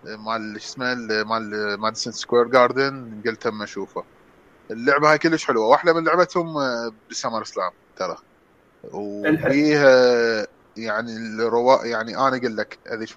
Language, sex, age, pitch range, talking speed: English, male, 20-39, 105-140 Hz, 125 wpm